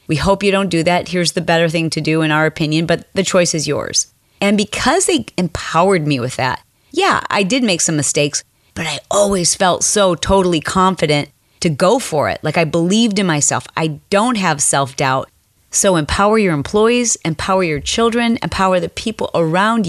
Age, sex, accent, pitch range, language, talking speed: 30-49, female, American, 150-195 Hz, English, 195 wpm